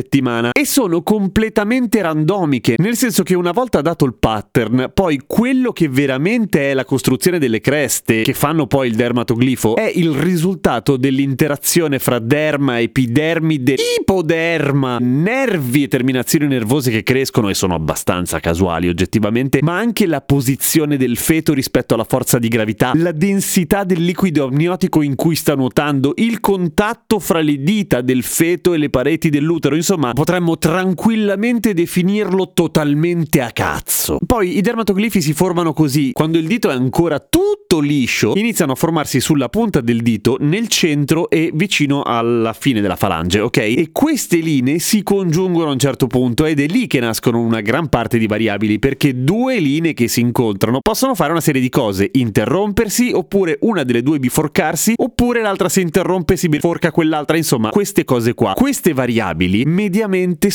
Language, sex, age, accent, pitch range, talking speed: Italian, male, 30-49, native, 130-185 Hz, 165 wpm